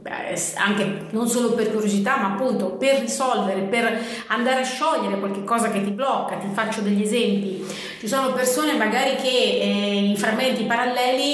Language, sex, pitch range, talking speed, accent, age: Italian, female, 210-270 Hz, 165 wpm, native, 30-49